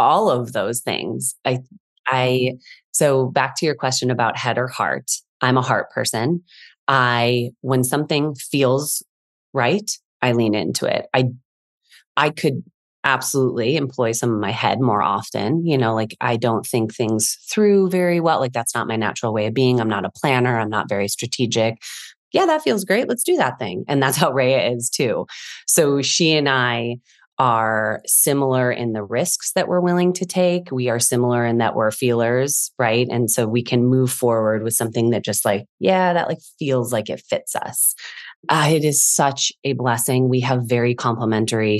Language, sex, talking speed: English, female, 185 wpm